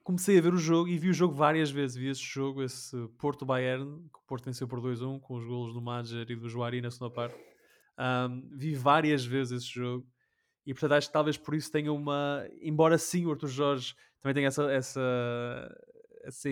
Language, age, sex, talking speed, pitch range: Portuguese, 20-39, male, 210 wpm, 120-140 Hz